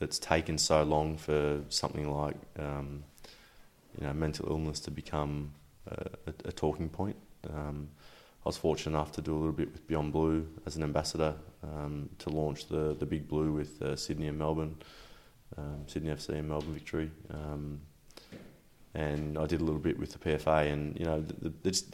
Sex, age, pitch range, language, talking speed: male, 20-39, 75-80 Hz, English, 185 wpm